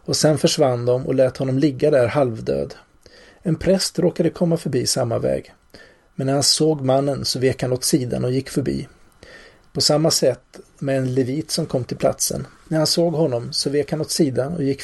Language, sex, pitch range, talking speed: Swedish, male, 130-155 Hz, 205 wpm